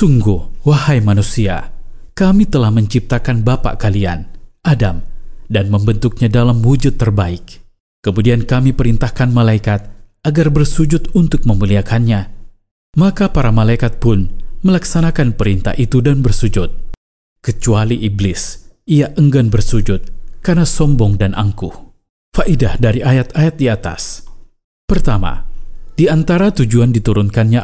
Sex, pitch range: male, 100-130 Hz